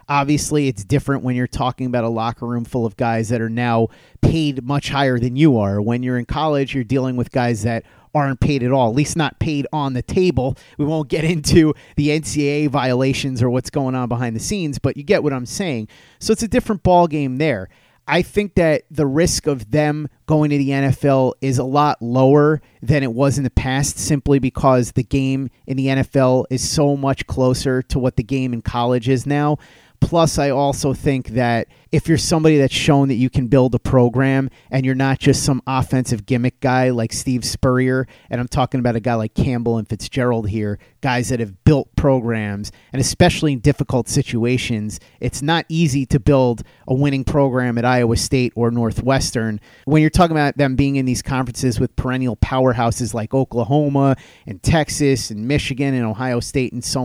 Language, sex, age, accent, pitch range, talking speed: English, male, 30-49, American, 125-150 Hz, 200 wpm